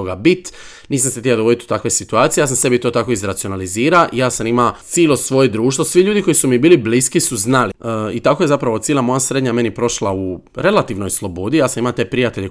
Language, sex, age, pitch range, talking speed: Croatian, male, 30-49, 110-145 Hz, 225 wpm